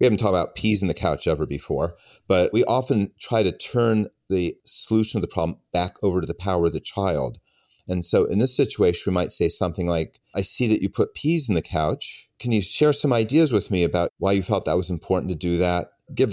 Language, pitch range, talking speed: English, 90-110 Hz, 245 wpm